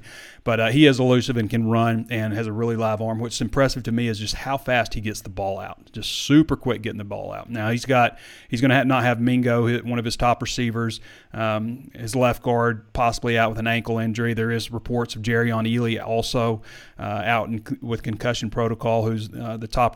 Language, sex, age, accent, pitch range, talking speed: English, male, 30-49, American, 110-120 Hz, 230 wpm